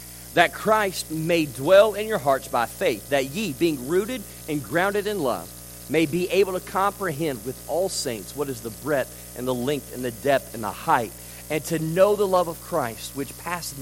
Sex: male